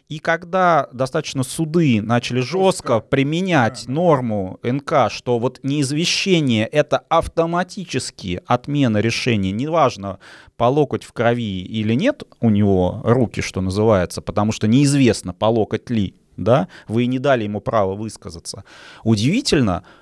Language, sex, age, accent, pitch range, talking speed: Russian, male, 30-49, native, 115-155 Hz, 125 wpm